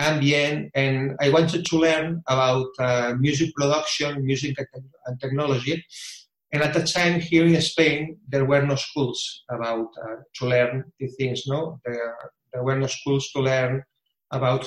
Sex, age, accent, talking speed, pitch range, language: male, 30-49, Spanish, 155 wpm, 125-150 Hz, English